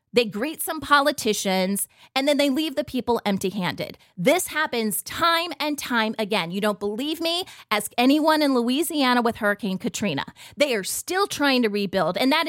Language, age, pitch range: English, 30-49, 210-305 Hz